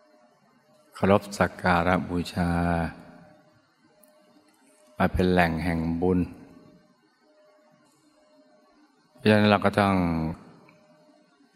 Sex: male